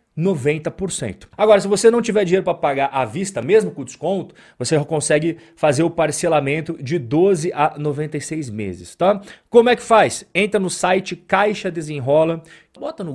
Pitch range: 130-190 Hz